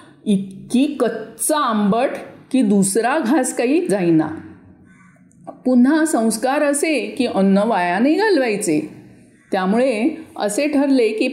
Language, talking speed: Marathi, 100 wpm